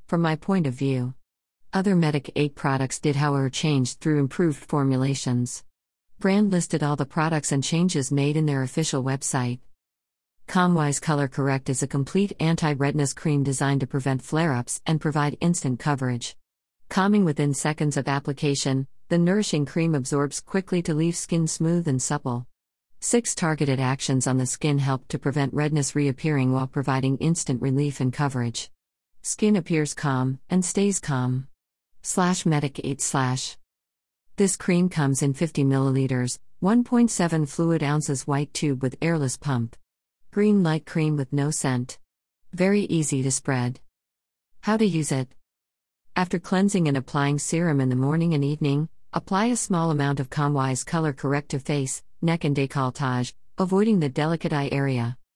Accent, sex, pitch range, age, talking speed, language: American, female, 130-165 Hz, 50-69, 155 wpm, English